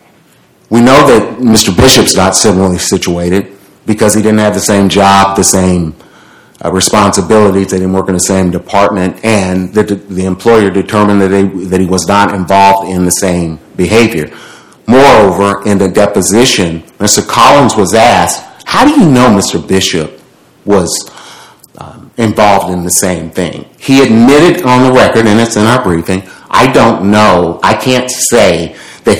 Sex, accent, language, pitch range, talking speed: male, American, English, 90-110 Hz, 165 wpm